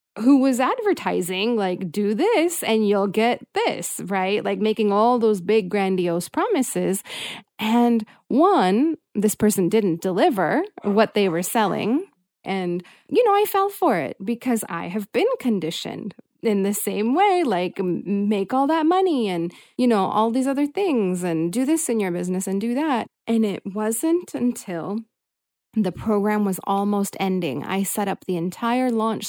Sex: female